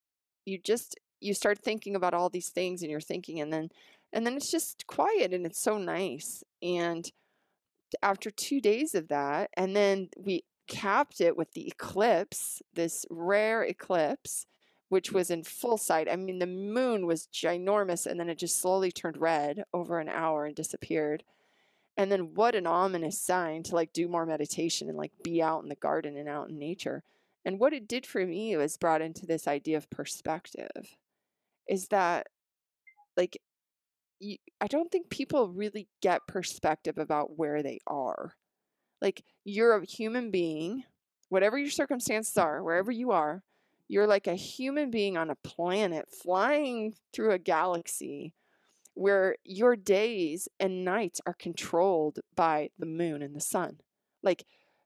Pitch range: 165-210 Hz